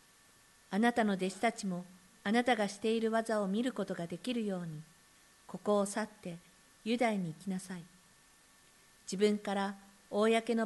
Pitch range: 180-220 Hz